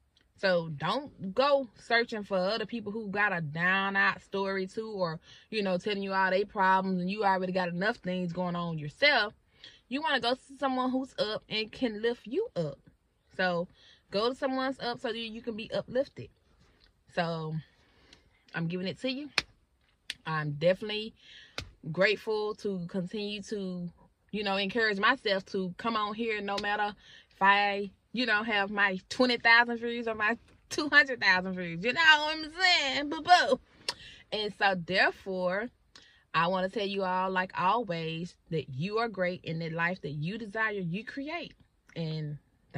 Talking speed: 165 wpm